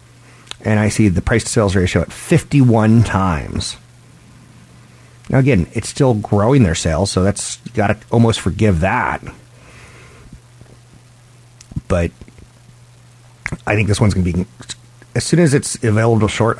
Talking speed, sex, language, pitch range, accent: 135 wpm, male, English, 100-125 Hz, American